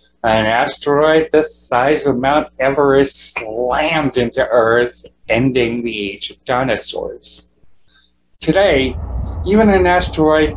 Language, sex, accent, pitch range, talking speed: English, male, American, 115-165 Hz, 110 wpm